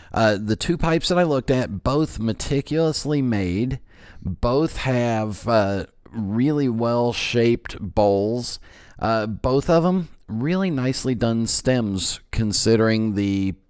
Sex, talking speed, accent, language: male, 125 wpm, American, English